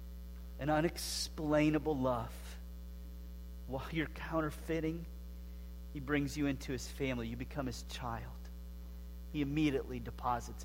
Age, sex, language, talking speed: 40-59, male, English, 105 wpm